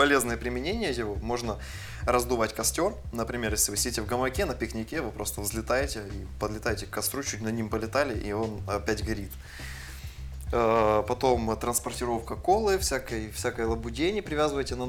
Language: Russian